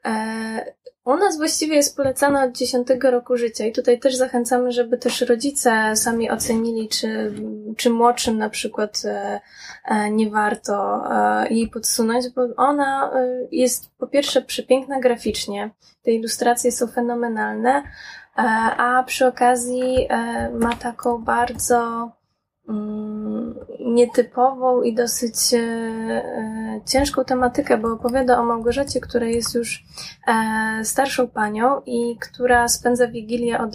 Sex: female